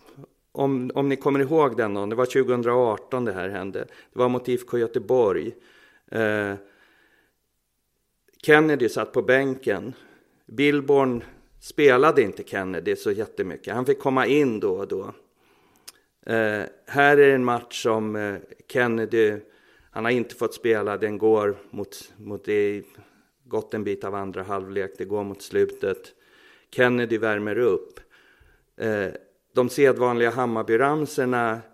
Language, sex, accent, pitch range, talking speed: Swedish, male, native, 110-150 Hz, 135 wpm